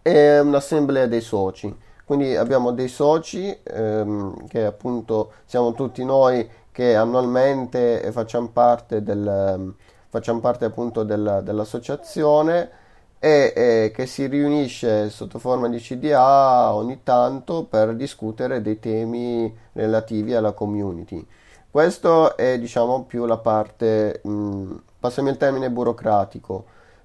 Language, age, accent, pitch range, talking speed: Italian, 30-49, native, 110-130 Hz, 115 wpm